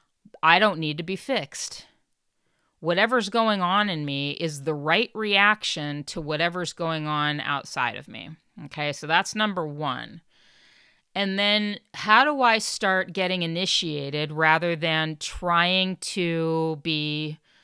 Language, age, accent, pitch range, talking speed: English, 40-59, American, 160-200 Hz, 135 wpm